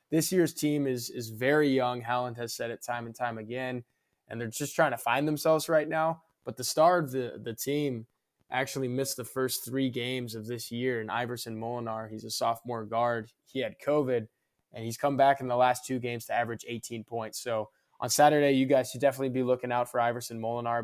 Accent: American